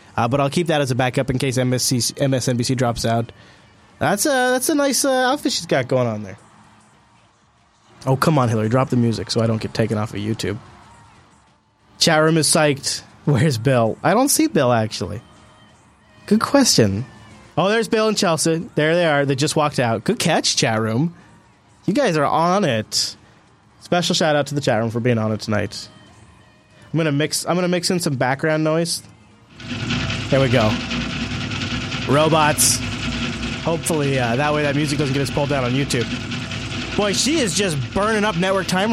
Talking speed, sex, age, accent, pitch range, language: 185 wpm, male, 20-39, American, 115-160 Hz, English